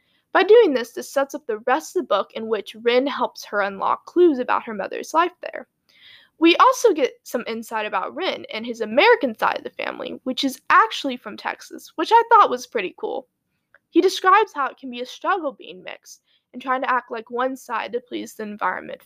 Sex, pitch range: female, 235-365 Hz